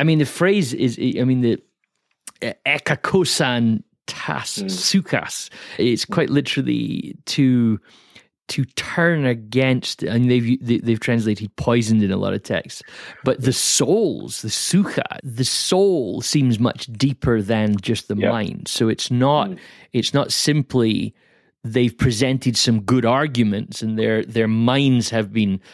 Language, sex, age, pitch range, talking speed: English, male, 30-49, 115-140 Hz, 140 wpm